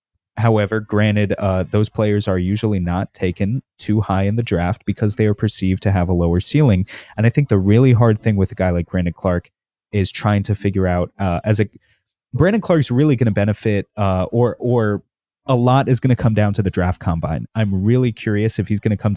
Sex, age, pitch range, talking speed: male, 30-49, 95-120 Hz, 230 wpm